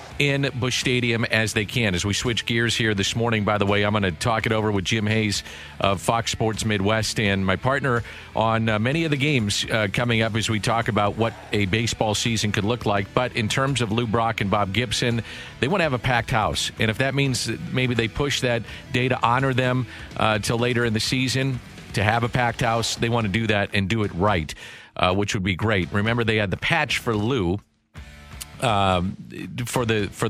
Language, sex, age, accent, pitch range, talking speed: English, male, 50-69, American, 100-115 Hz, 230 wpm